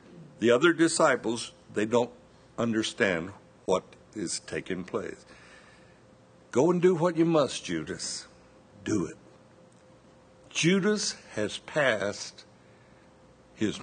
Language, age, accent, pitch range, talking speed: English, 60-79, American, 105-155 Hz, 100 wpm